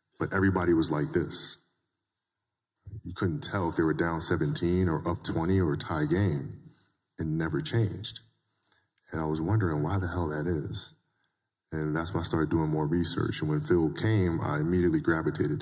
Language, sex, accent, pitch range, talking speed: English, male, American, 80-95 Hz, 175 wpm